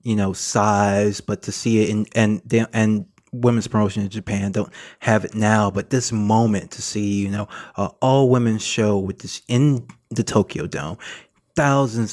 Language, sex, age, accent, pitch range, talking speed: English, male, 20-39, American, 105-115 Hz, 180 wpm